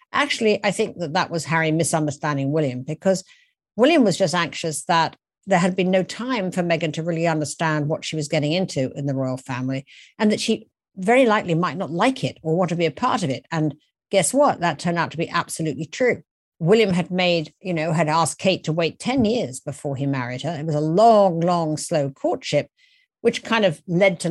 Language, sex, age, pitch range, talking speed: English, female, 50-69, 150-185 Hz, 220 wpm